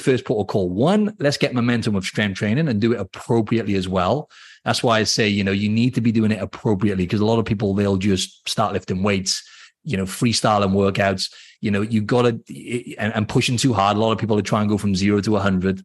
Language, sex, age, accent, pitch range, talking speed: English, male, 30-49, British, 95-115 Hz, 260 wpm